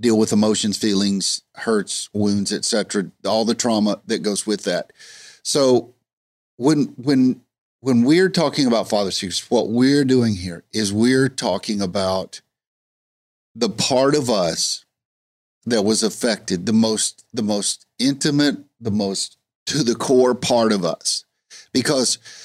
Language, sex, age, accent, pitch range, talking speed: English, male, 50-69, American, 100-115 Hz, 140 wpm